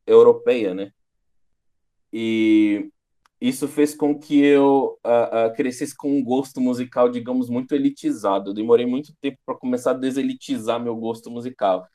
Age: 20-39